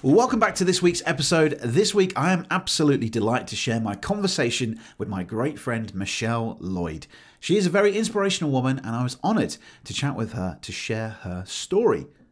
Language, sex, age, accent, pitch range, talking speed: English, male, 40-59, British, 100-150 Hz, 195 wpm